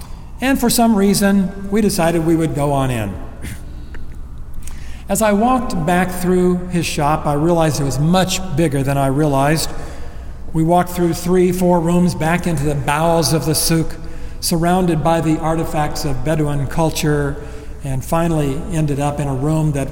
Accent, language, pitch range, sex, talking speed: American, English, 140-180 Hz, male, 165 wpm